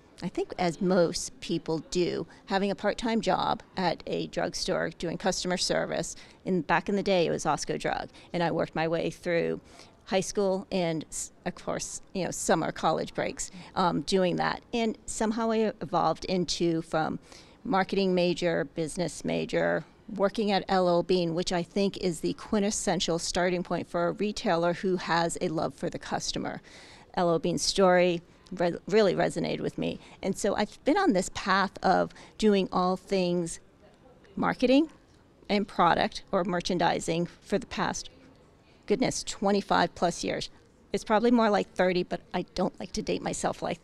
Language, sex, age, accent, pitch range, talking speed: English, female, 40-59, American, 175-200 Hz, 165 wpm